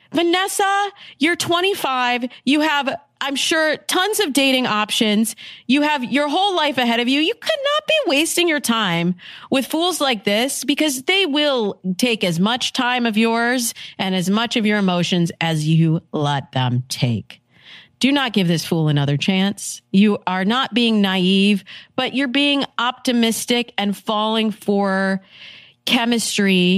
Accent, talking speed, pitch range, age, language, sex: American, 155 wpm, 180-255 Hz, 40-59, English, female